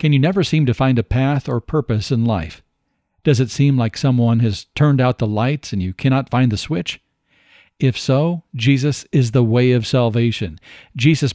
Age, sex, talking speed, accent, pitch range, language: 40-59, male, 195 wpm, American, 115-140 Hz, English